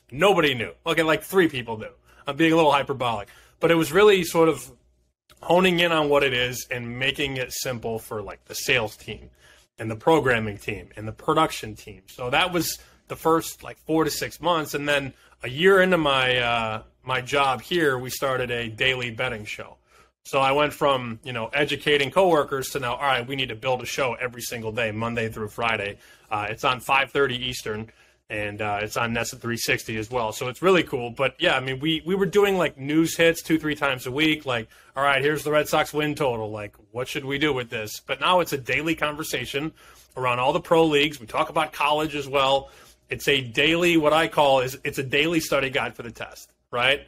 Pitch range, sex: 120-155 Hz, male